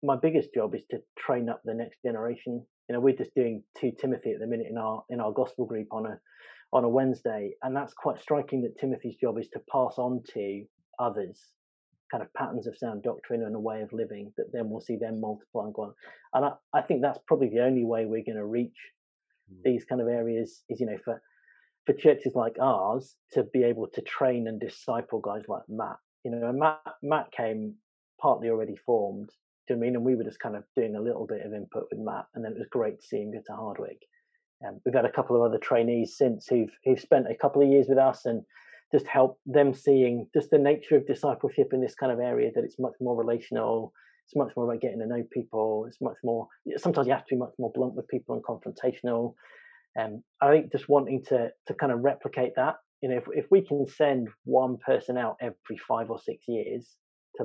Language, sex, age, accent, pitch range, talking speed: English, male, 30-49, British, 115-140 Hz, 235 wpm